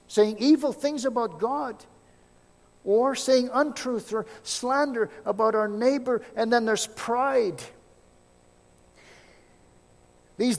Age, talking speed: 50-69, 100 wpm